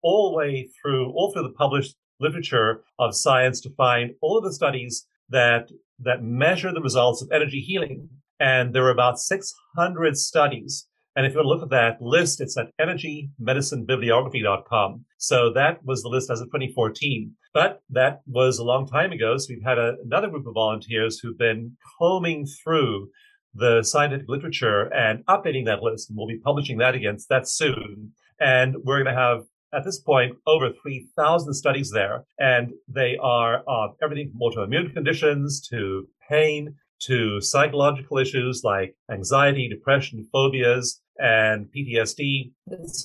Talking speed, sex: 160 wpm, male